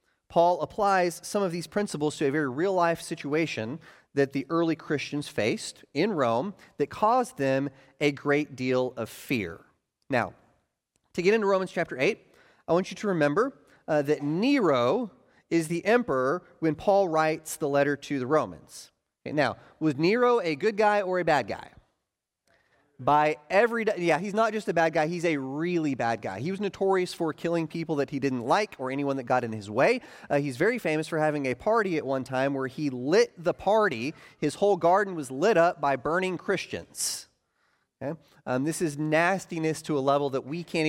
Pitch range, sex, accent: 140-180 Hz, male, American